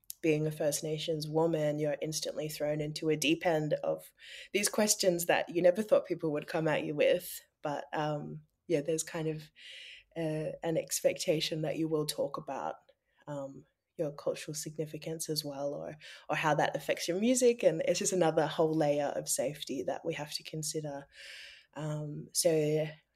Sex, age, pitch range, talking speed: female, 20-39, 155-180 Hz, 175 wpm